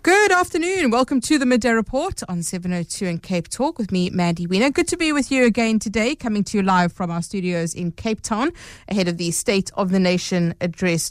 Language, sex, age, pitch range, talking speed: English, female, 30-49, 180-250 Hz, 220 wpm